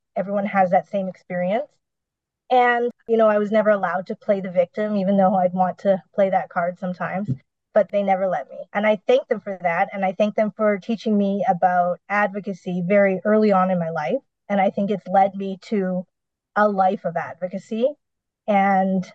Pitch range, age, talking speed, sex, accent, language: 180-210 Hz, 20-39, 195 wpm, female, American, English